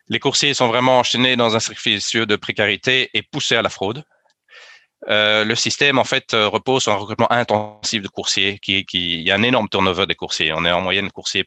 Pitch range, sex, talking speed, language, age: 95-115 Hz, male, 220 wpm, French, 30-49